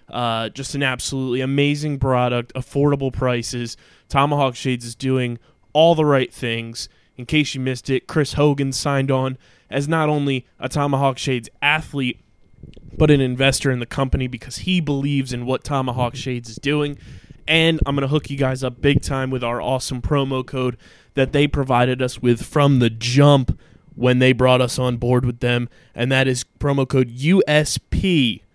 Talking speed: 175 wpm